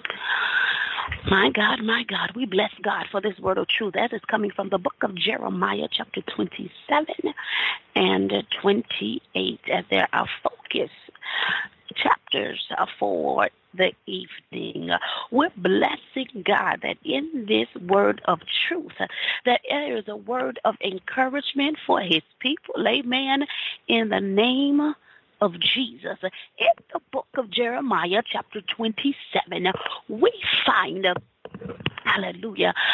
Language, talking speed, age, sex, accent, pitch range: English, 120 wpm, 40-59, female, American, 210-290 Hz